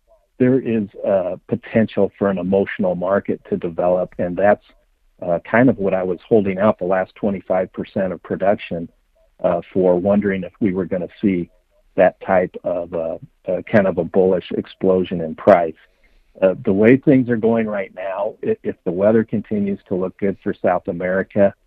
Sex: male